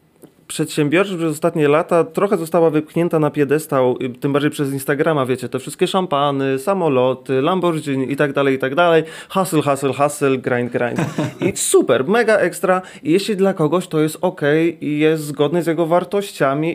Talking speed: 165 wpm